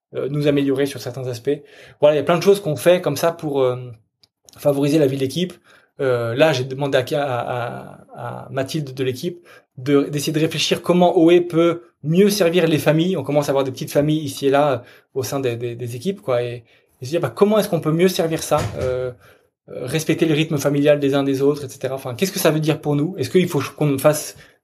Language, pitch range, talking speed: French, 140-175 Hz, 230 wpm